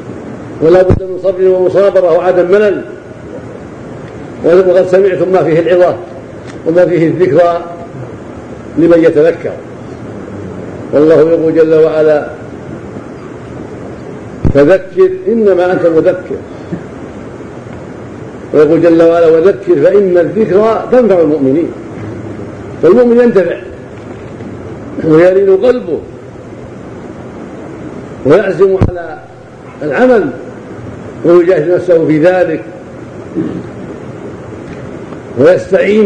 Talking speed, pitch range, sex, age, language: 75 wpm, 160-195 Hz, male, 50-69, Arabic